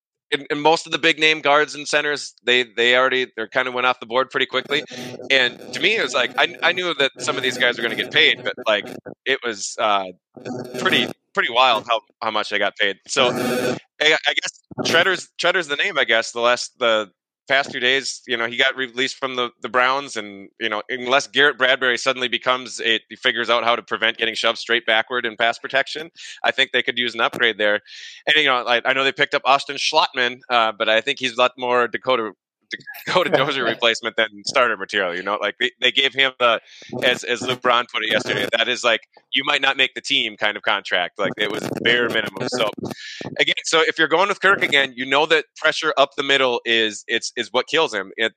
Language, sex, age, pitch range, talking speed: English, male, 20-39, 120-140 Hz, 240 wpm